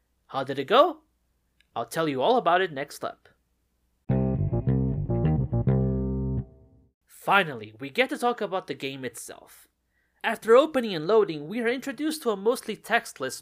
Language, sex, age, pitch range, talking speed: English, male, 30-49, 130-205 Hz, 145 wpm